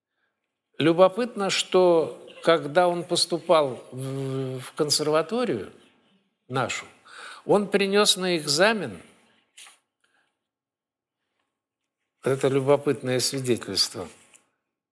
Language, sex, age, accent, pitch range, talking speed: Russian, male, 60-79, native, 125-170 Hz, 65 wpm